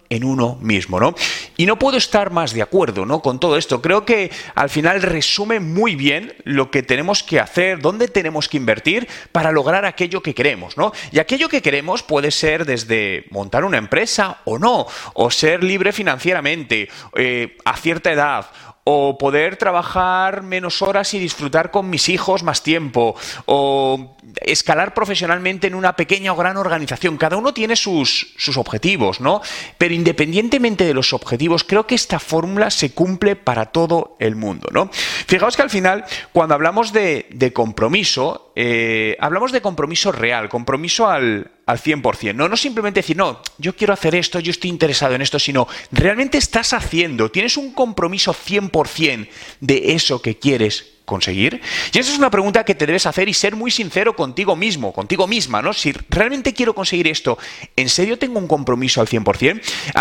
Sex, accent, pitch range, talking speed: male, Spanish, 140-200 Hz, 175 wpm